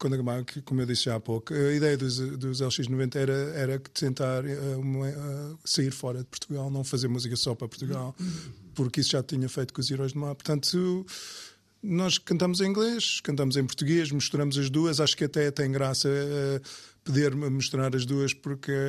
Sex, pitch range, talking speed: male, 125-155 Hz, 185 wpm